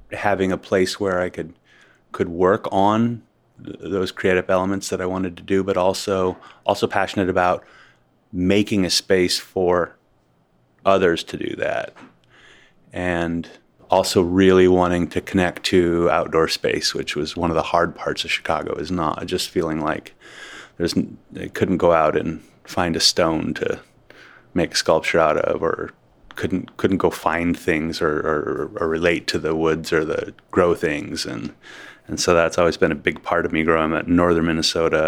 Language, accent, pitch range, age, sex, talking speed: English, American, 85-100 Hz, 30-49, male, 175 wpm